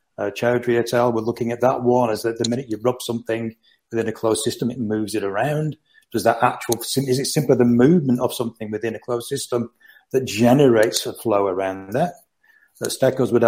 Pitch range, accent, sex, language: 110-130 Hz, British, male, English